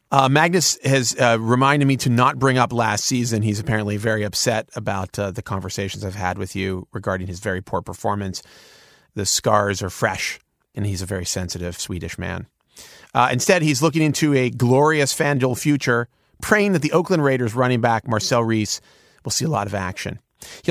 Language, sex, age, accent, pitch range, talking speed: English, male, 30-49, American, 110-140 Hz, 190 wpm